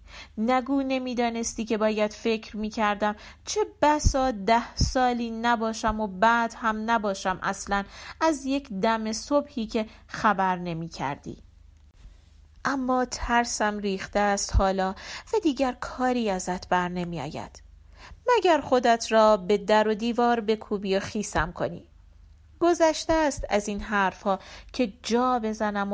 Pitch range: 205-255 Hz